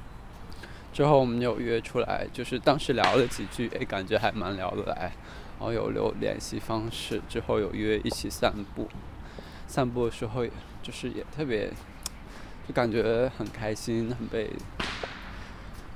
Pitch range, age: 105-135 Hz, 20-39